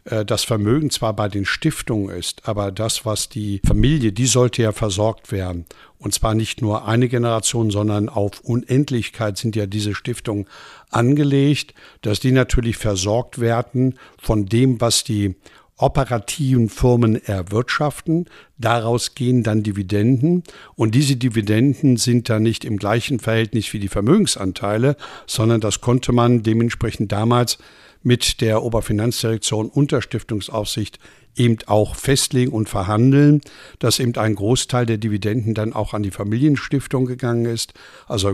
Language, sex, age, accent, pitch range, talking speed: German, male, 60-79, German, 105-125 Hz, 140 wpm